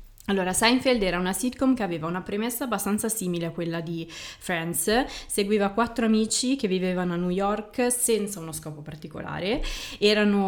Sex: female